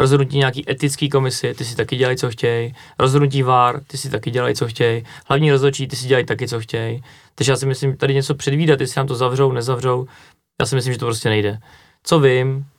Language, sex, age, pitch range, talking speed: Czech, male, 20-39, 120-145 Hz, 225 wpm